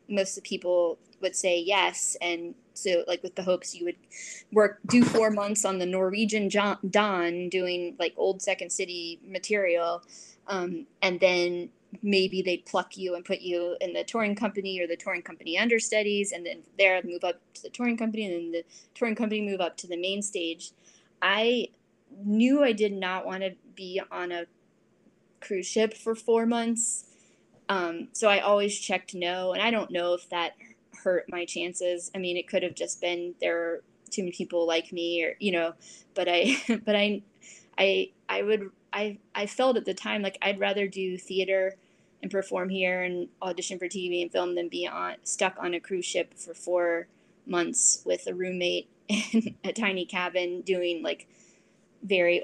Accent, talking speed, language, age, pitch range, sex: American, 185 wpm, English, 20-39, 175-205 Hz, female